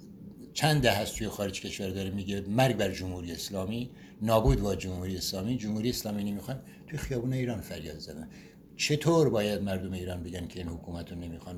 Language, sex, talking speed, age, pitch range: Persian, male, 170 wpm, 60-79, 90-120 Hz